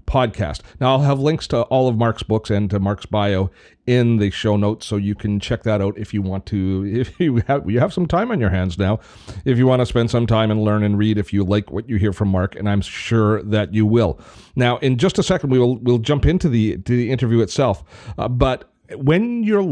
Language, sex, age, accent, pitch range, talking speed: English, male, 40-59, American, 100-125 Hz, 255 wpm